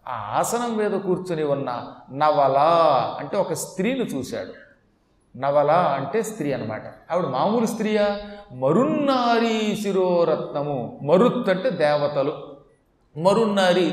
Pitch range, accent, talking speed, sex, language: 160-215 Hz, native, 100 wpm, male, Telugu